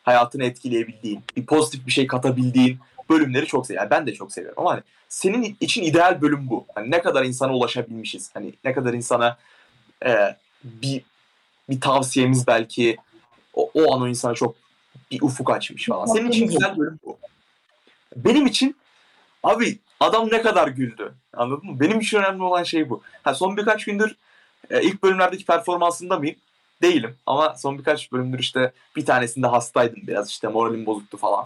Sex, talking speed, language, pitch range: male, 170 wpm, Turkish, 125-180 Hz